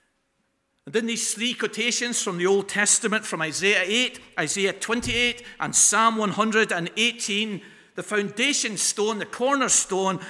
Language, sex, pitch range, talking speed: English, male, 160-220 Hz, 130 wpm